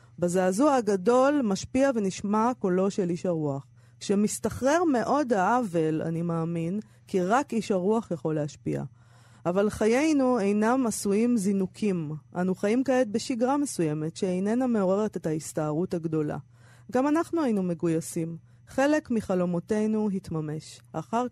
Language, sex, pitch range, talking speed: Hebrew, female, 160-220 Hz, 120 wpm